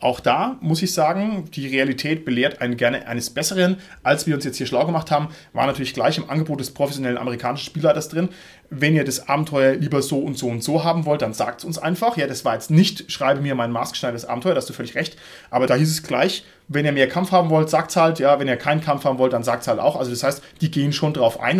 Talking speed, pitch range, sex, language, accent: 265 wpm, 130-165 Hz, male, German, German